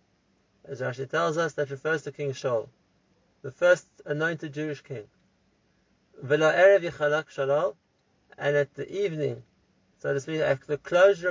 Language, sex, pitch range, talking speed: English, male, 135-170 Hz, 125 wpm